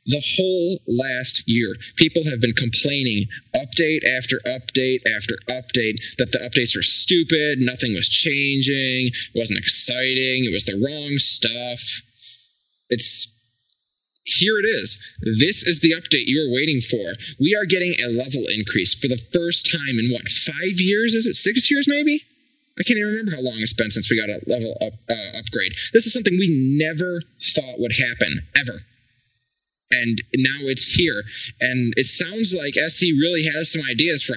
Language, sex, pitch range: English, male, 120-160 Hz